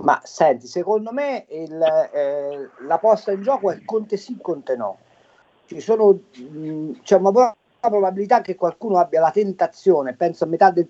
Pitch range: 135-205 Hz